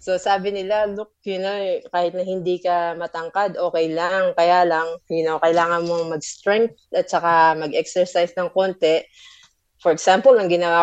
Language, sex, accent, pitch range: Filipino, female, native, 170-205 Hz